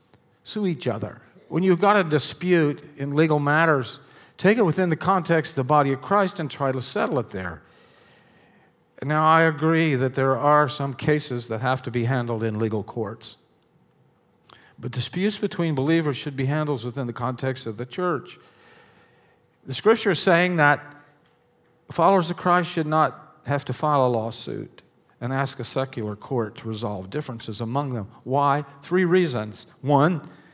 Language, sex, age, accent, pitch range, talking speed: English, male, 50-69, American, 120-160 Hz, 165 wpm